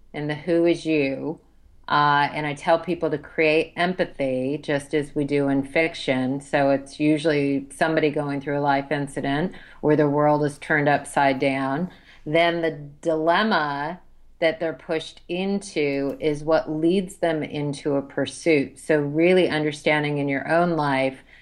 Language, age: English, 40-59